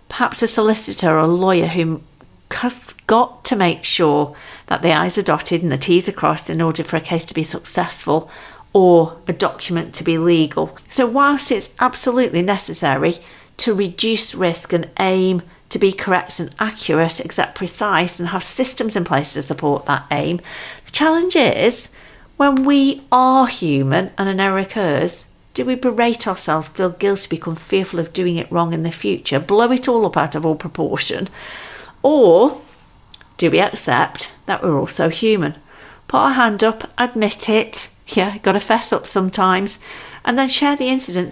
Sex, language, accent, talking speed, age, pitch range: female, English, British, 175 wpm, 50-69, 165-230 Hz